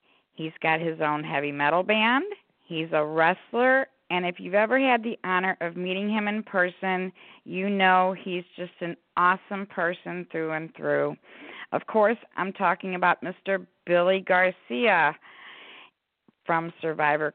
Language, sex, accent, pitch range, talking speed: English, female, American, 165-210 Hz, 145 wpm